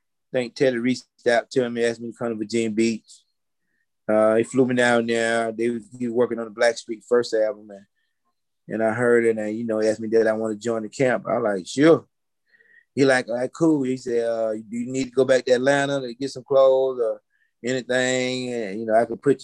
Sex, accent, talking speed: male, American, 245 wpm